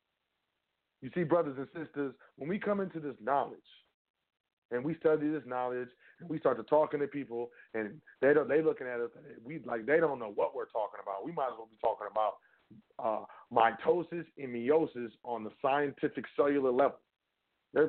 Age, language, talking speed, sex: 30-49, English, 190 wpm, male